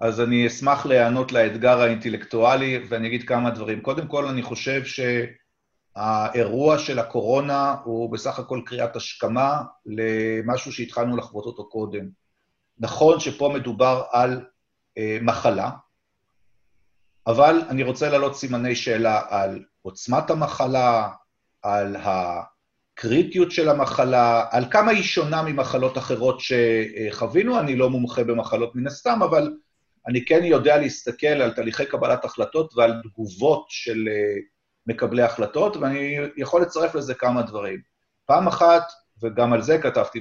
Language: Hebrew